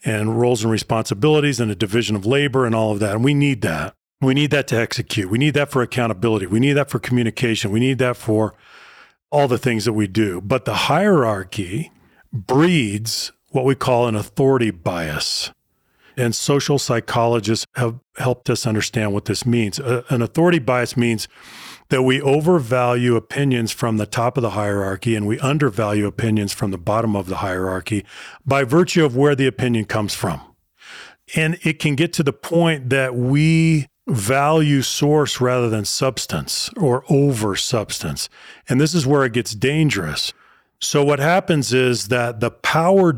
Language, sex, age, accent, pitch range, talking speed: English, male, 40-59, American, 110-140 Hz, 175 wpm